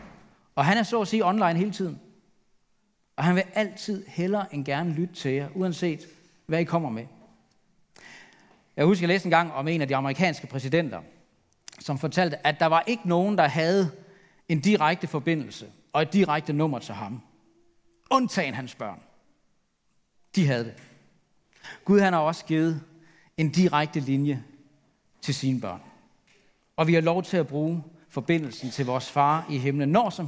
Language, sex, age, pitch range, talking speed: Danish, male, 40-59, 140-185 Hz, 170 wpm